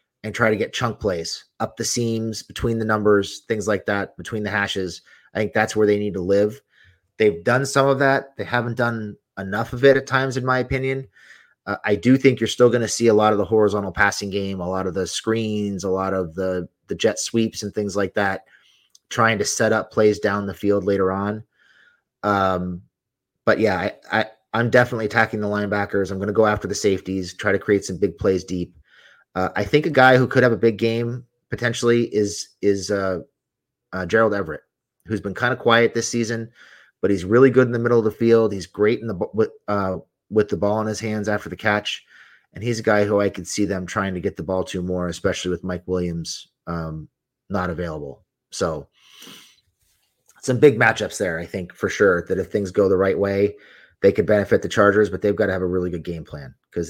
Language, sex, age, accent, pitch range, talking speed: English, male, 30-49, American, 95-115 Hz, 225 wpm